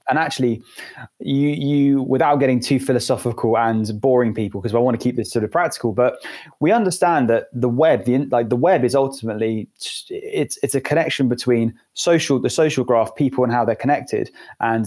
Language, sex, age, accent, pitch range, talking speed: English, male, 20-39, British, 115-140 Hz, 190 wpm